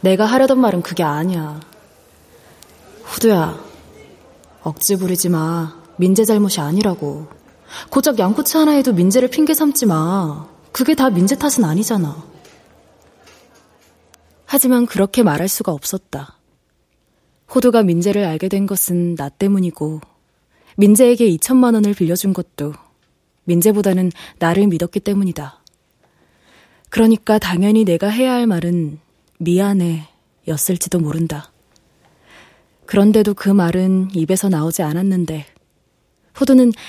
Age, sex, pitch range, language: 20-39, female, 170-220 Hz, Korean